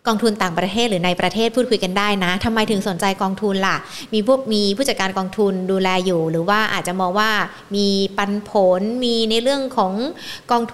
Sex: female